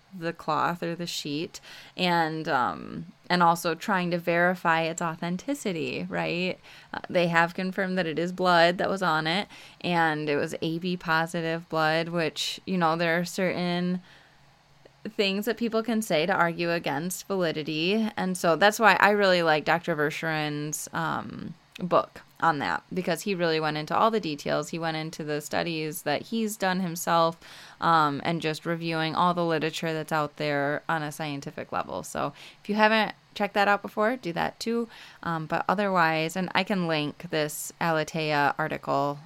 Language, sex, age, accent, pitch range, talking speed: English, female, 20-39, American, 160-195 Hz, 170 wpm